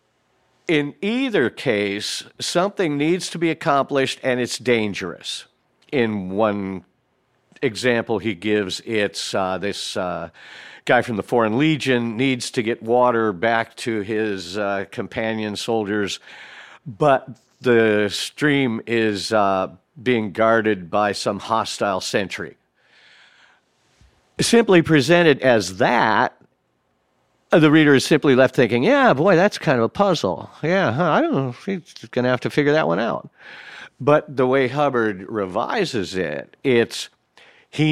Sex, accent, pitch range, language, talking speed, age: male, American, 110-135 Hz, English, 135 wpm, 50-69